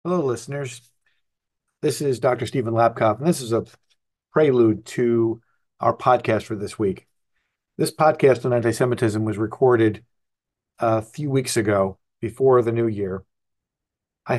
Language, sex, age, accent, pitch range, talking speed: English, male, 40-59, American, 110-130 Hz, 140 wpm